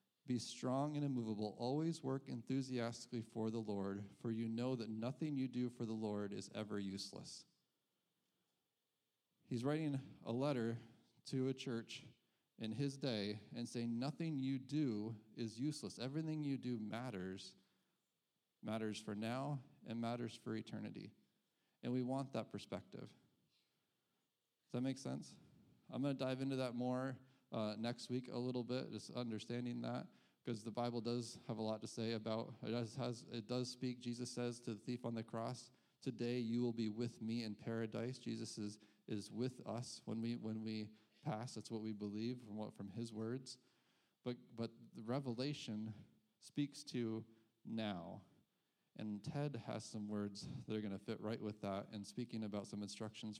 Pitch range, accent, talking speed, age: 110-130 Hz, American, 170 wpm, 40-59